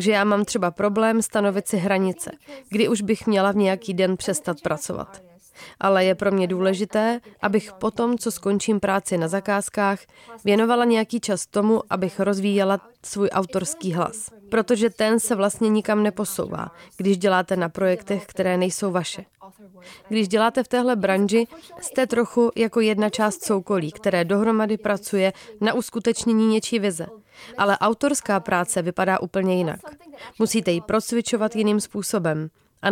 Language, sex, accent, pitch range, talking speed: Czech, female, native, 190-225 Hz, 150 wpm